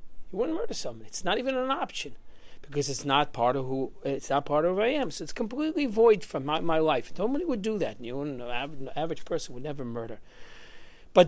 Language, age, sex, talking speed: English, 40-59, male, 225 wpm